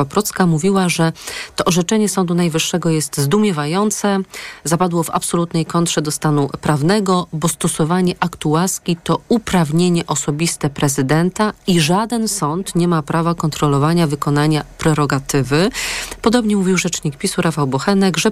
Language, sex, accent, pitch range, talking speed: Polish, female, native, 155-190 Hz, 130 wpm